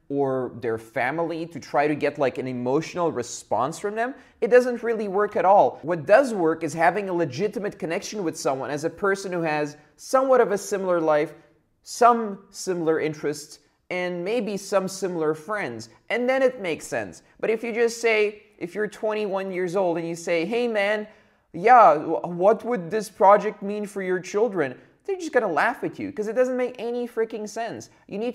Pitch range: 150-215 Hz